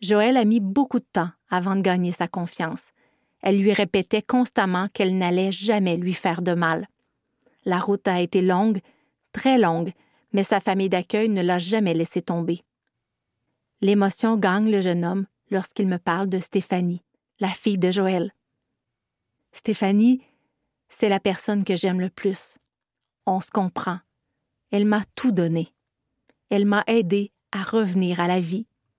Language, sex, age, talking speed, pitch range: French, female, 30-49, 155 wpm, 180-215 Hz